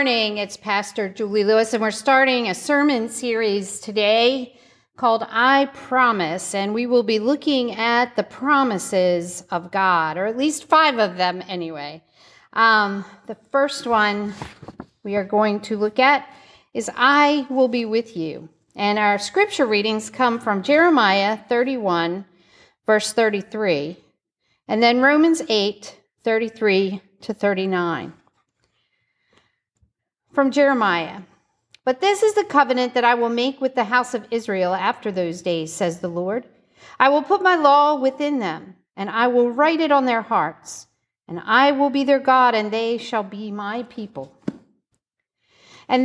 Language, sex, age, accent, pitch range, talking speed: English, female, 50-69, American, 205-280 Hz, 150 wpm